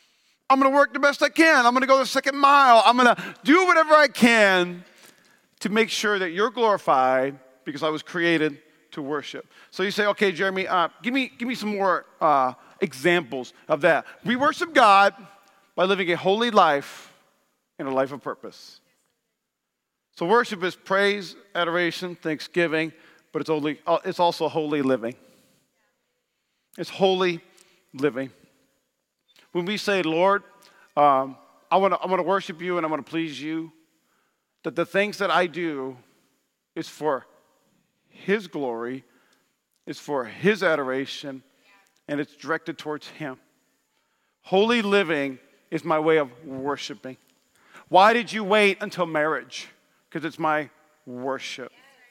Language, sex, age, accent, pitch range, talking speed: English, male, 40-59, American, 155-210 Hz, 150 wpm